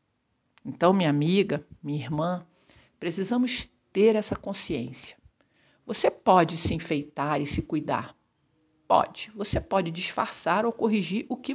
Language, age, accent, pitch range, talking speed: Portuguese, 50-69, Brazilian, 150-200 Hz, 125 wpm